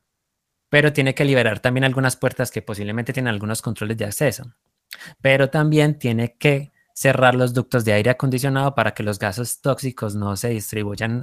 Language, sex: Spanish, male